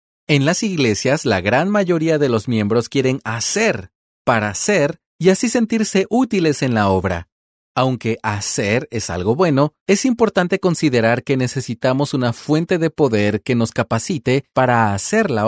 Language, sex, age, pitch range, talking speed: Spanish, male, 40-59, 110-165 Hz, 155 wpm